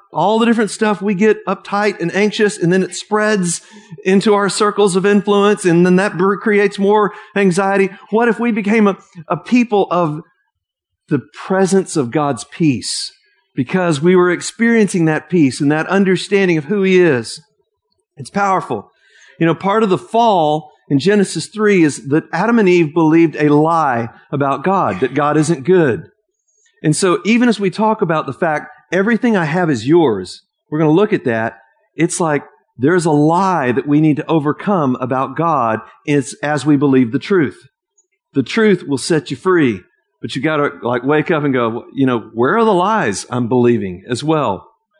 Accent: American